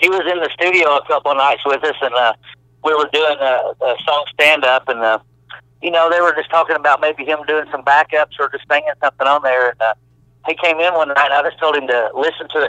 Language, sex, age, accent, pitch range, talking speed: English, male, 60-79, American, 125-150 Hz, 260 wpm